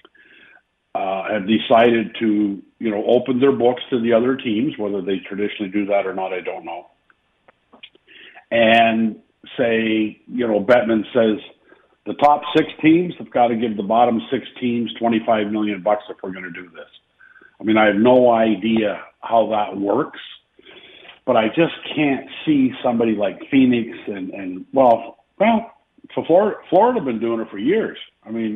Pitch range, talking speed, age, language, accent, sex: 110-135 Hz, 170 wpm, 50-69, English, American, male